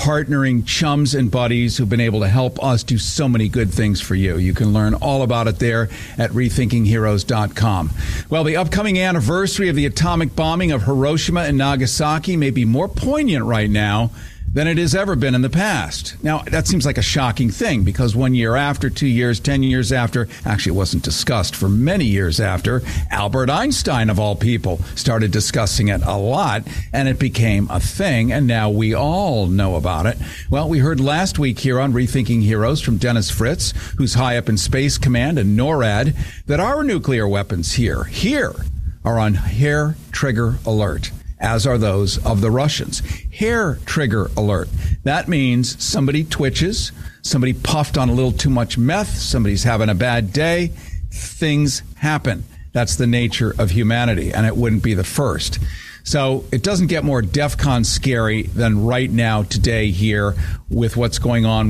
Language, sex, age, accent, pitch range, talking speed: English, male, 50-69, American, 105-135 Hz, 180 wpm